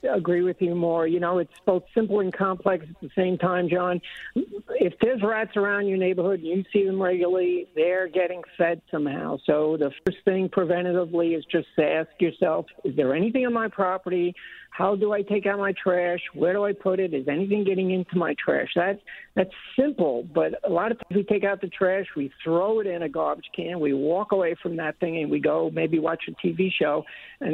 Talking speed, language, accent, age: 220 wpm, English, American, 60-79